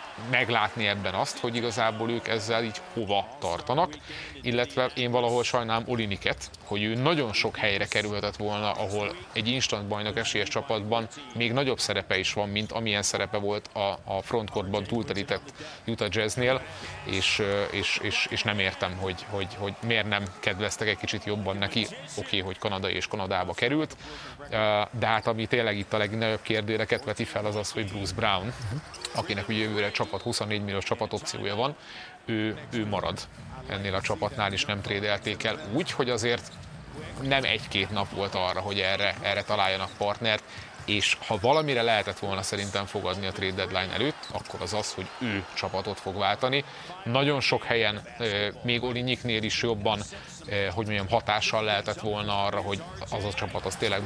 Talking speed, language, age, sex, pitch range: 165 wpm, Hungarian, 30-49, male, 100-115 Hz